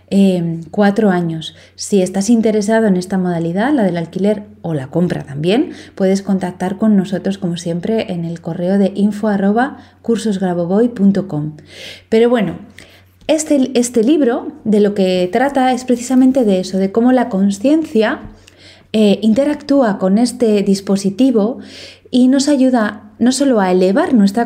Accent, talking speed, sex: Spanish, 140 wpm, female